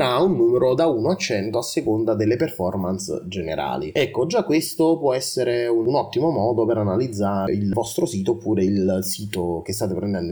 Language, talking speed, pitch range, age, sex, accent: Italian, 180 wpm, 100-140 Hz, 30-49, male, native